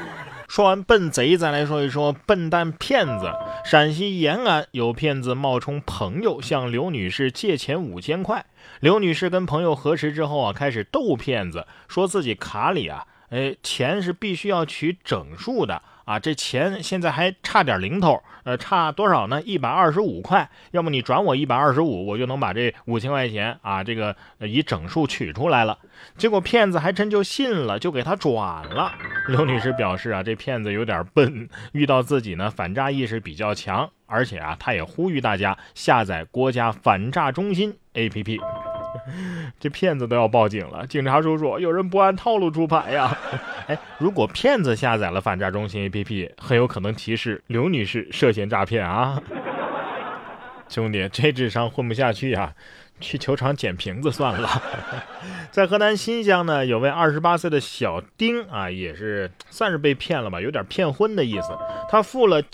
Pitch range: 115-175 Hz